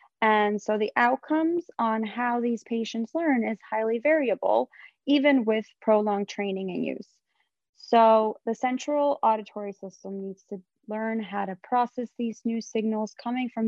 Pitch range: 195-230 Hz